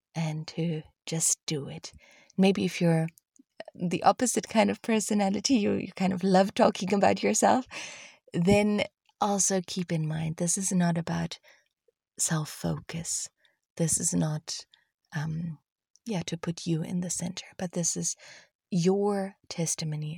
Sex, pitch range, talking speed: female, 160-190 Hz, 140 wpm